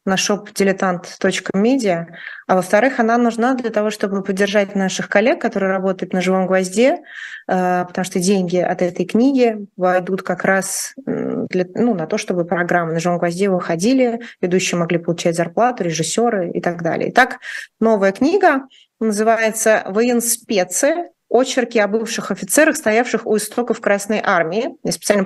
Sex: female